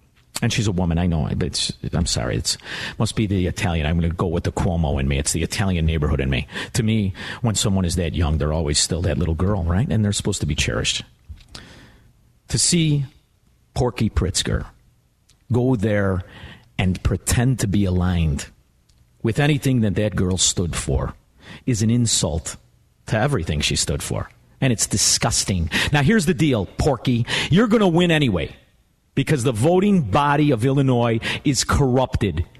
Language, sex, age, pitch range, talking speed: English, male, 50-69, 95-145 Hz, 180 wpm